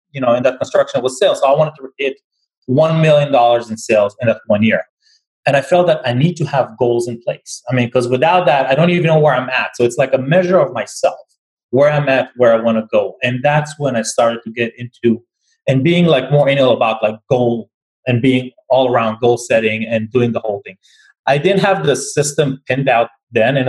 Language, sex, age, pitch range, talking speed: English, male, 30-49, 120-155 Hz, 245 wpm